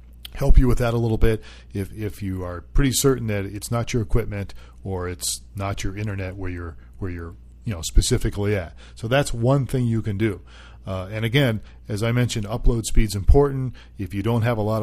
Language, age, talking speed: English, 40-59, 220 wpm